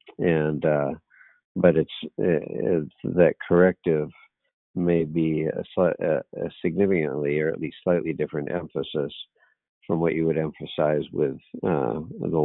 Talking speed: 140 wpm